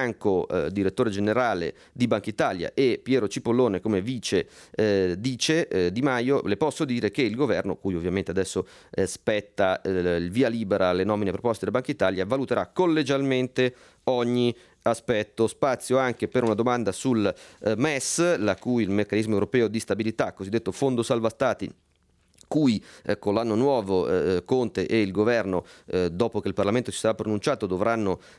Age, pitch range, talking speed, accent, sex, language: 30-49, 100-125 Hz, 170 wpm, native, male, Italian